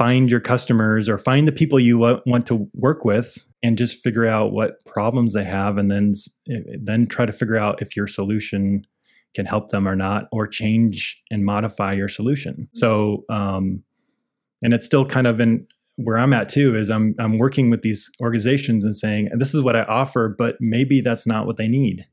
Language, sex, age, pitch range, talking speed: English, male, 20-39, 105-120 Hz, 200 wpm